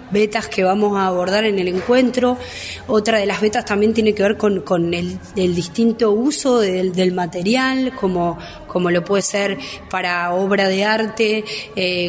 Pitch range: 180-220 Hz